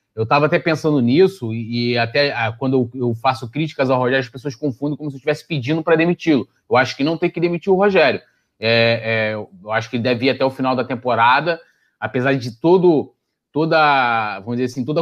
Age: 20-39